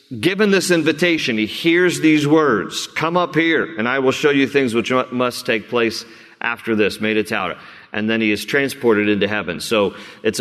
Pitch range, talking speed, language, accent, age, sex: 110-140 Hz, 195 wpm, English, American, 40-59, male